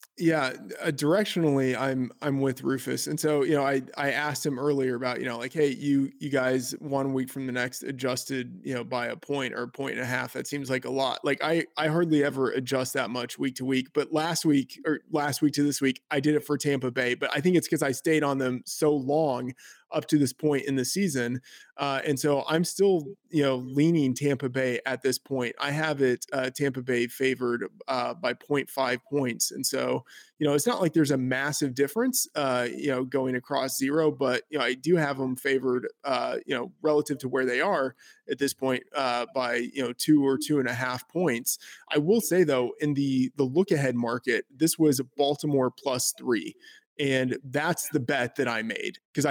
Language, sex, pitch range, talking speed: English, male, 130-150 Hz, 225 wpm